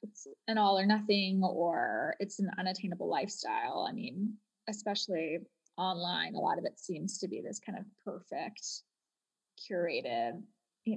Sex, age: female, 10-29